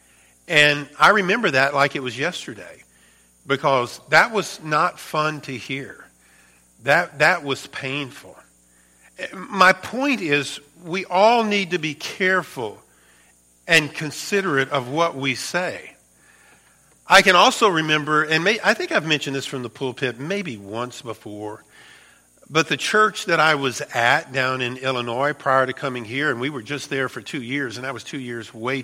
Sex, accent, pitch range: male, American, 125-170 Hz